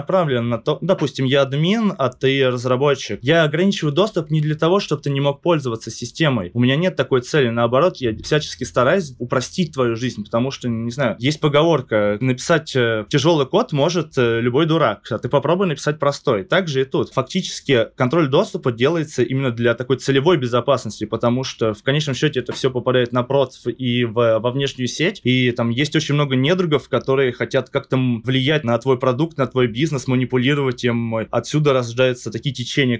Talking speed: 175 wpm